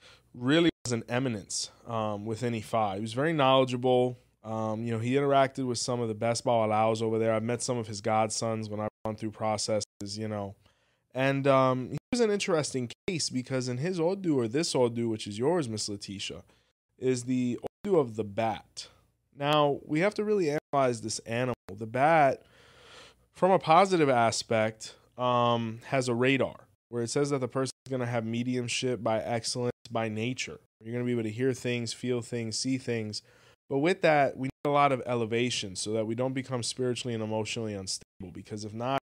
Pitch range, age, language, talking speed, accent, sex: 110-130 Hz, 20-39, English, 195 wpm, American, male